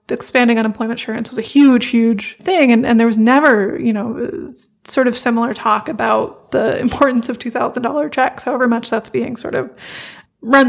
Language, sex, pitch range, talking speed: English, female, 230-260 Hz, 190 wpm